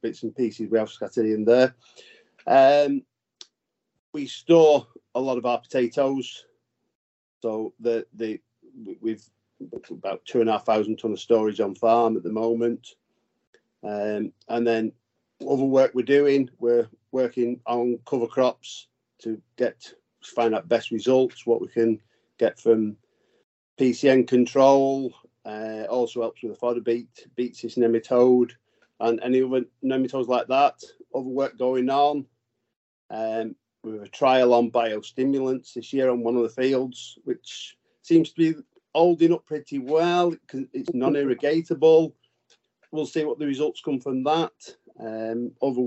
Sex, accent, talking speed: male, British, 150 wpm